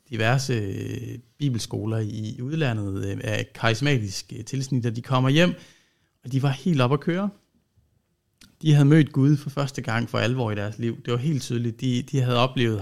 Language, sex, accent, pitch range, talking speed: Danish, male, native, 115-145 Hz, 180 wpm